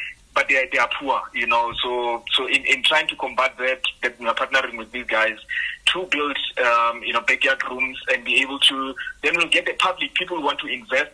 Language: English